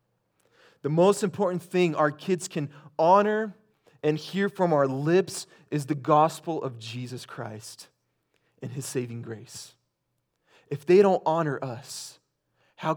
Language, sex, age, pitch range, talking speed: English, male, 20-39, 115-150 Hz, 135 wpm